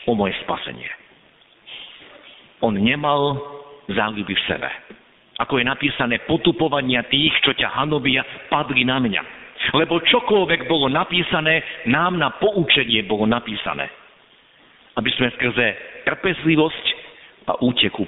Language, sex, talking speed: Slovak, male, 115 wpm